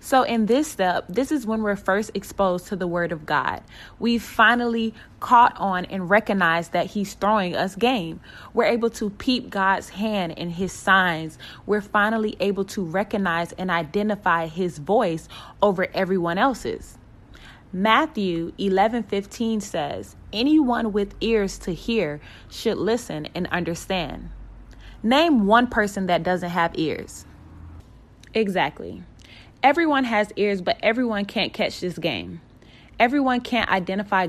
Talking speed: 145 wpm